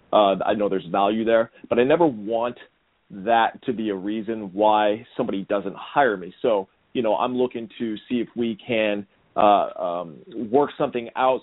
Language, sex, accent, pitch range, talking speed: English, male, American, 110-135 Hz, 185 wpm